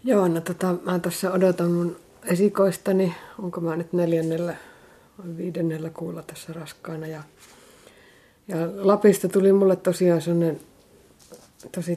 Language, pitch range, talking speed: Finnish, 165-180 Hz, 125 wpm